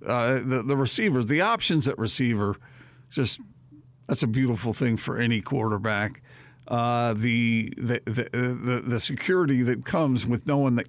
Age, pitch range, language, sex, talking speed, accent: 50-69, 120-135 Hz, English, male, 155 wpm, American